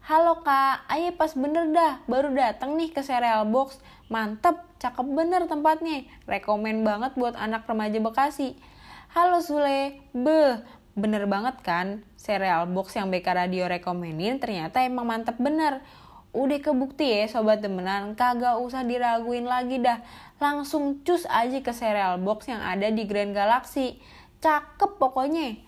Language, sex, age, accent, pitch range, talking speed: Indonesian, female, 10-29, native, 205-280 Hz, 145 wpm